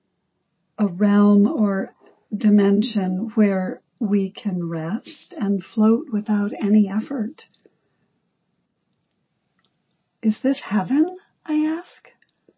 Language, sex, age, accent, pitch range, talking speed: English, female, 60-79, American, 190-225 Hz, 85 wpm